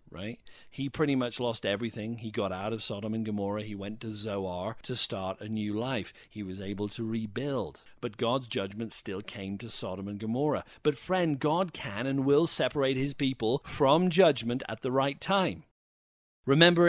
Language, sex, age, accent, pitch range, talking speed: English, male, 40-59, British, 110-150 Hz, 185 wpm